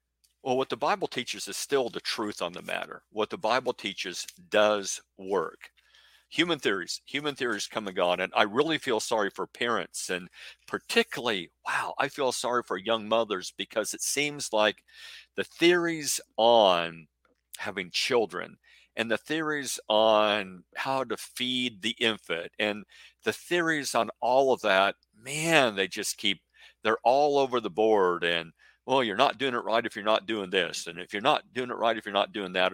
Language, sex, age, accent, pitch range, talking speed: English, male, 50-69, American, 90-120 Hz, 180 wpm